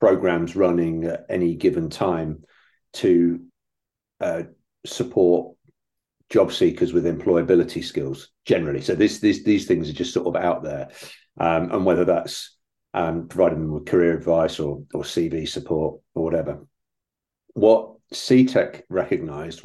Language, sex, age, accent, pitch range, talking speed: English, male, 40-59, British, 85-95 Hz, 135 wpm